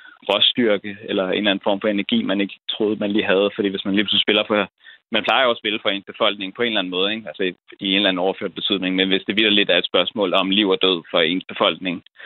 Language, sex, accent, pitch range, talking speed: Danish, male, native, 95-110 Hz, 275 wpm